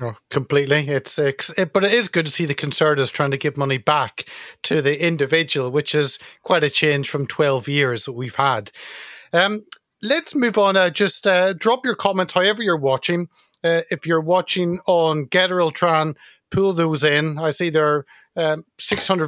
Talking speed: 185 wpm